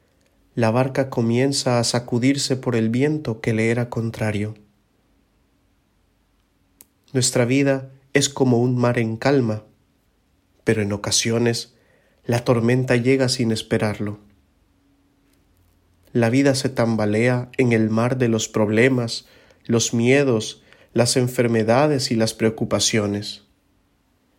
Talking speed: 110 wpm